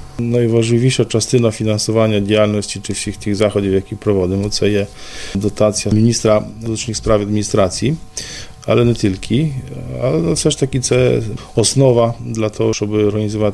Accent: native